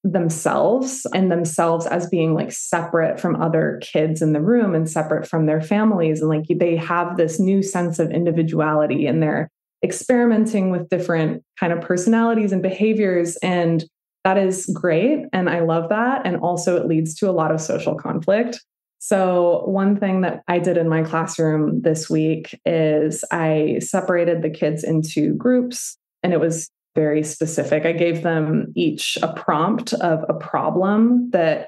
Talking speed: 165 wpm